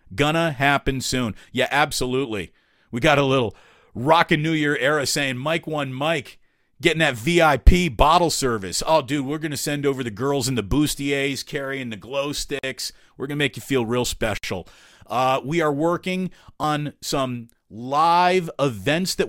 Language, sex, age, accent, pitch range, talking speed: English, male, 40-59, American, 125-155 Hz, 165 wpm